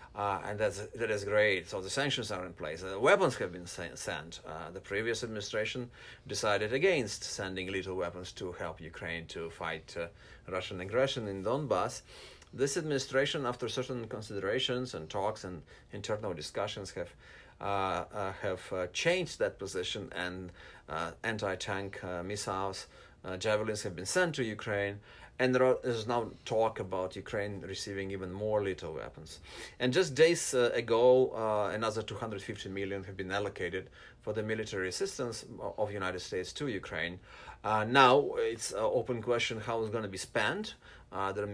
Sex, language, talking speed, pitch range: male, English, 170 wpm, 95-120 Hz